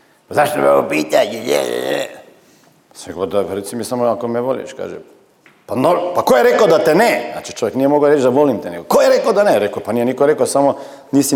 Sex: male